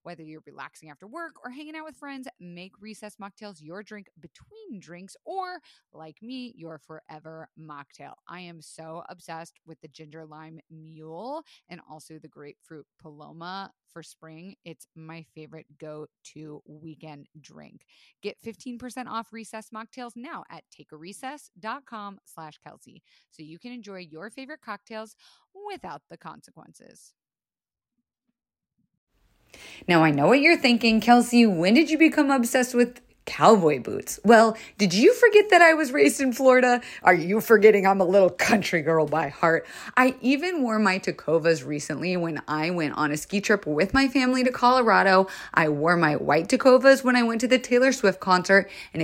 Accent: American